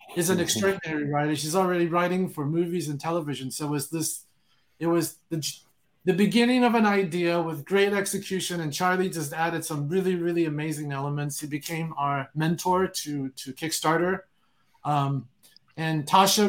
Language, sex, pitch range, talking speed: English, male, 150-185 Hz, 165 wpm